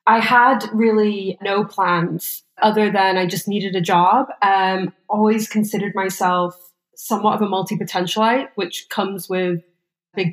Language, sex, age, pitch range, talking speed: English, female, 20-39, 180-230 Hz, 140 wpm